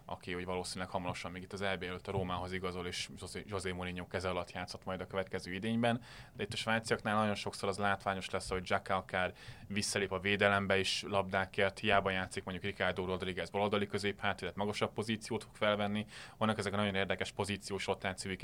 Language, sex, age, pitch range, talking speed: Hungarian, male, 20-39, 95-105 Hz, 180 wpm